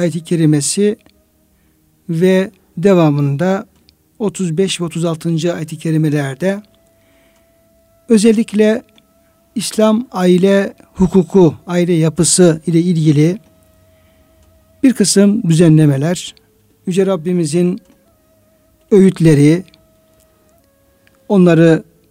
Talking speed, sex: 65 wpm, male